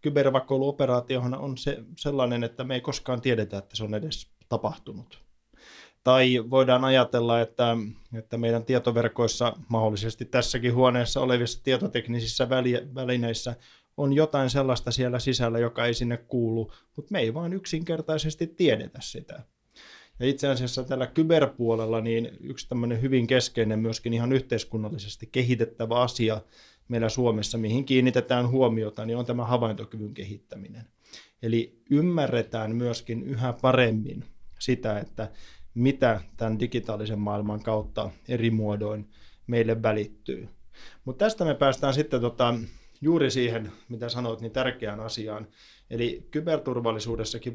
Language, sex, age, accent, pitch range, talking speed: Finnish, male, 20-39, native, 115-130 Hz, 125 wpm